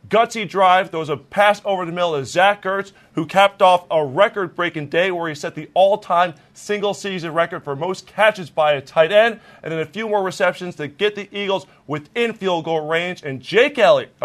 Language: English